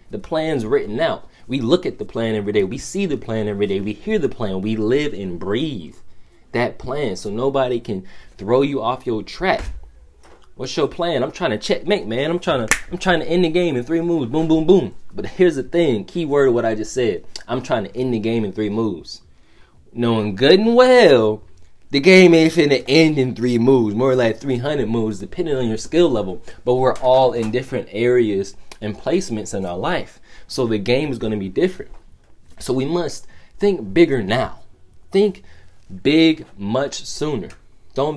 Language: English